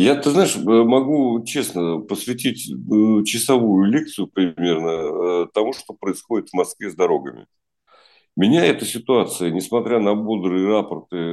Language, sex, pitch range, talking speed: Russian, male, 95-130 Hz, 120 wpm